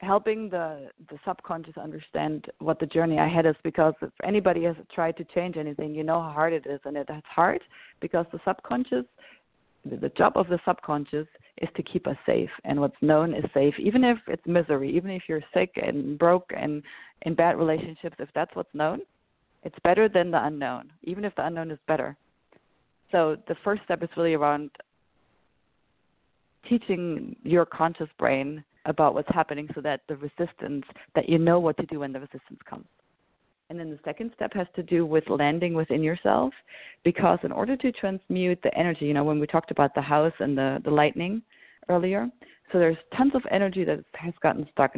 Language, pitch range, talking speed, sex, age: English, 150-175 Hz, 190 wpm, female, 30-49